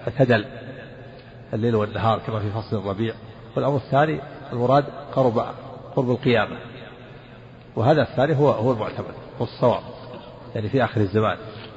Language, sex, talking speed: Arabic, male, 115 wpm